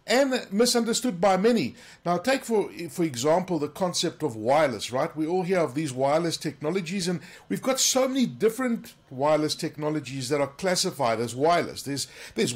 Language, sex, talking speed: English, male, 170 wpm